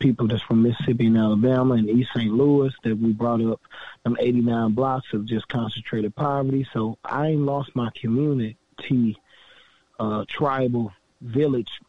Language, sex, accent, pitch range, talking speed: English, male, American, 115-140 Hz, 155 wpm